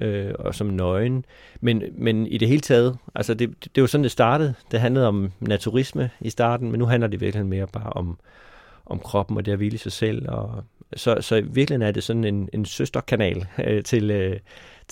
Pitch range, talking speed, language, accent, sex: 100-125 Hz, 215 wpm, Danish, native, male